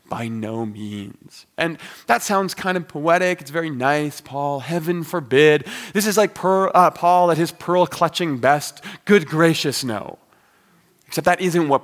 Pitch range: 135-180 Hz